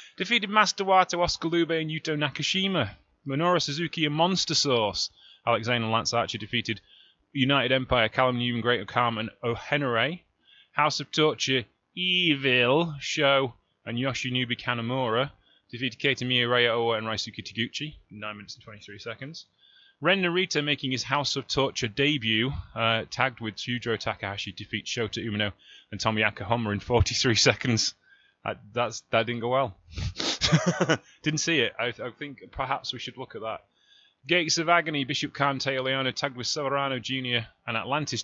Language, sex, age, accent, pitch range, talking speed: English, male, 20-39, British, 115-150 Hz, 150 wpm